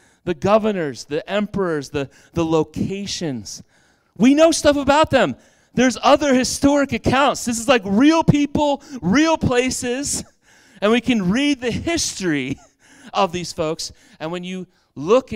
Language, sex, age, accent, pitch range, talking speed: English, male, 30-49, American, 160-245 Hz, 140 wpm